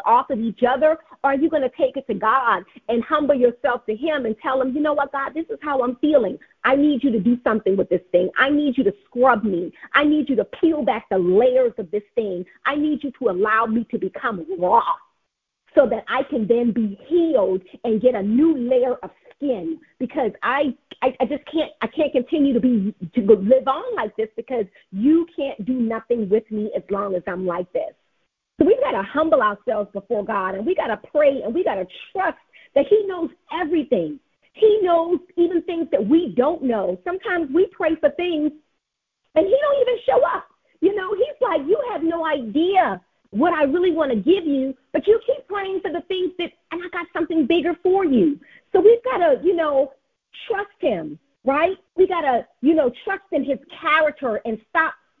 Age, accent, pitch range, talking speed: 40-59, American, 235-335 Hz, 215 wpm